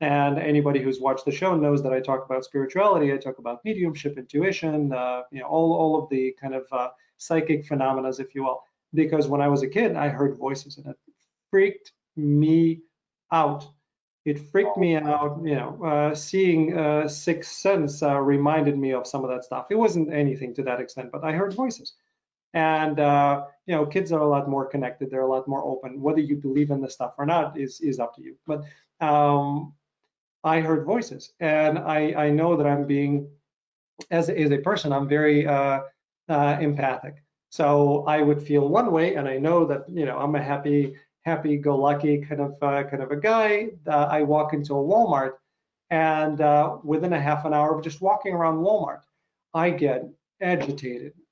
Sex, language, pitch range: male, English, 140-160 Hz